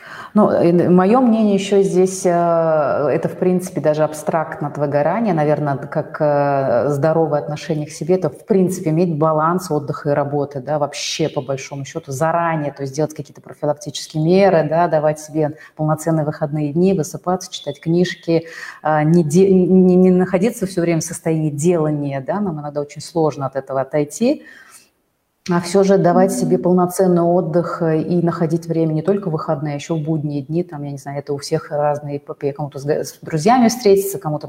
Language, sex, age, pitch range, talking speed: Russian, female, 30-49, 150-185 Hz, 170 wpm